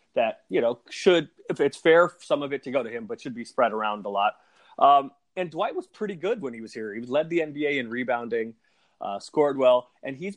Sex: male